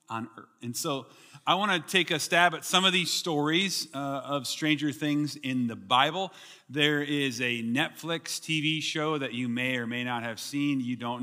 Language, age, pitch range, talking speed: English, 30-49, 135-190 Hz, 190 wpm